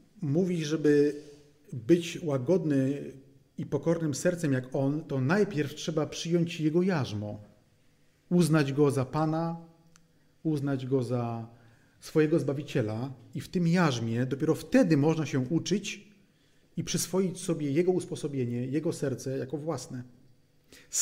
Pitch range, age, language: 130-160 Hz, 30-49, Polish